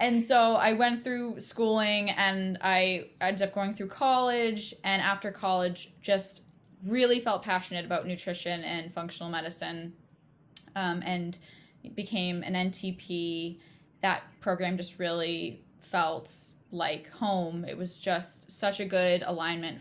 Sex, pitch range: female, 170-200 Hz